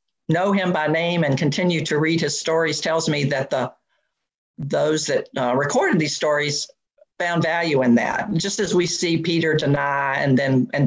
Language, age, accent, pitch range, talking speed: English, 50-69, American, 145-190 Hz, 180 wpm